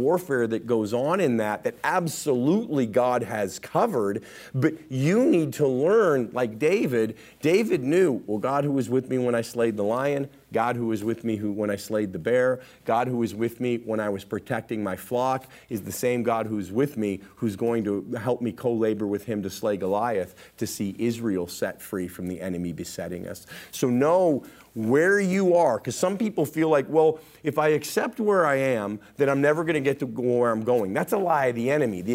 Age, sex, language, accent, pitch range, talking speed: 40-59, male, English, American, 110-140 Hz, 215 wpm